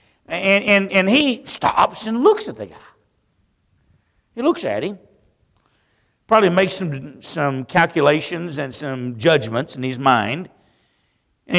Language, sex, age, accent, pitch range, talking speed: English, male, 60-79, American, 115-175 Hz, 135 wpm